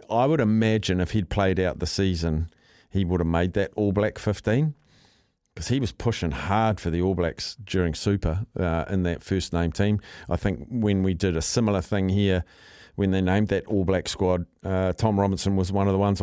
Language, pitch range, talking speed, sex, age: English, 90-115 Hz, 200 wpm, male, 50-69